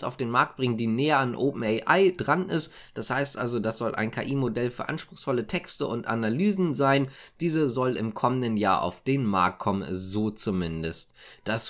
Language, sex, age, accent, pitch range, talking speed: German, male, 20-39, German, 120-155 Hz, 180 wpm